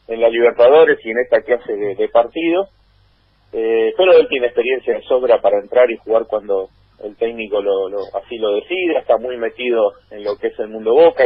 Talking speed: 210 wpm